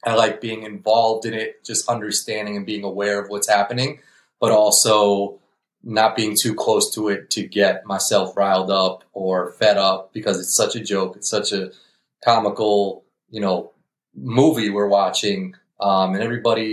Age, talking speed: 30-49, 170 wpm